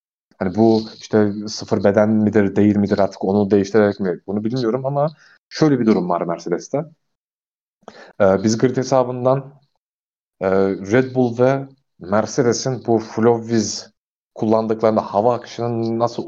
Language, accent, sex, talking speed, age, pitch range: Turkish, native, male, 130 wpm, 40-59, 105-130 Hz